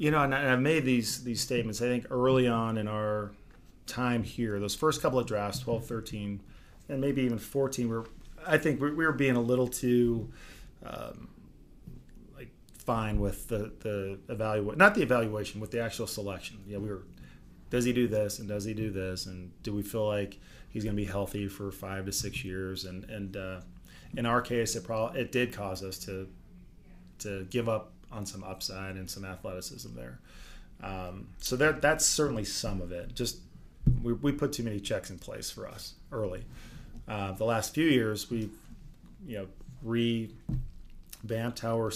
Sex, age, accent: male, 30-49, American